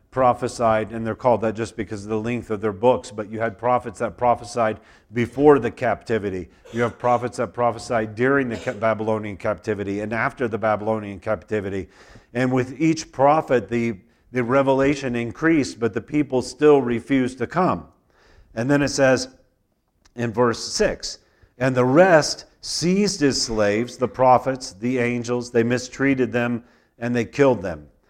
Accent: American